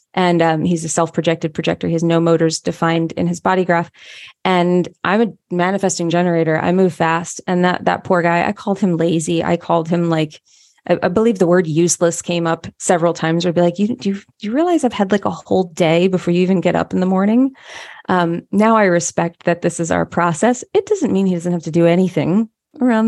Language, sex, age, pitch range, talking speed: English, female, 20-39, 170-195 Hz, 225 wpm